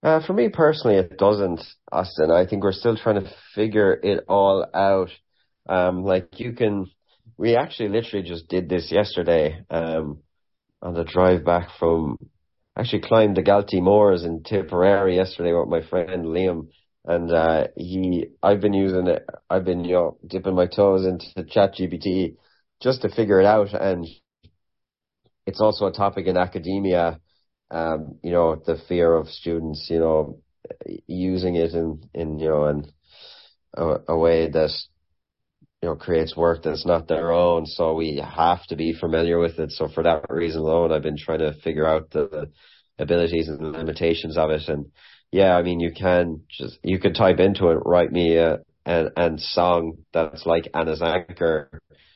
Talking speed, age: 175 wpm, 30-49